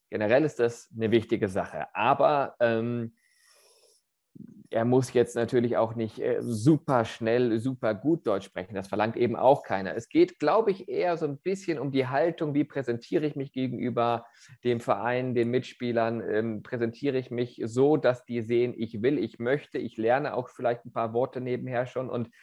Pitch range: 110-130 Hz